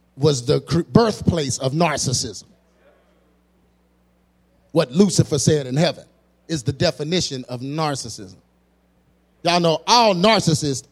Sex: male